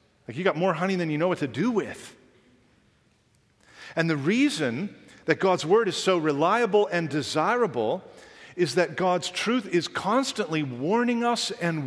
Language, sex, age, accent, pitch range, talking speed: English, male, 50-69, American, 150-230 Hz, 155 wpm